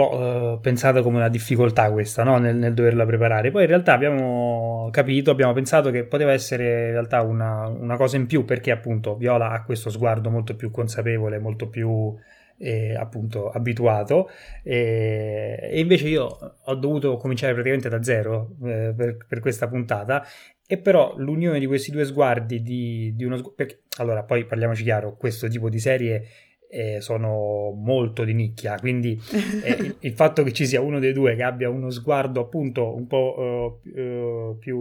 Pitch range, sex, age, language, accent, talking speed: 115-135 Hz, male, 20-39, Italian, native, 175 wpm